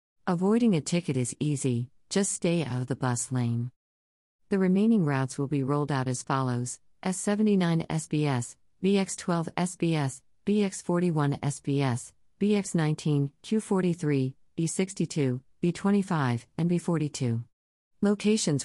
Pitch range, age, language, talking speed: 130-165 Hz, 50-69, English, 110 wpm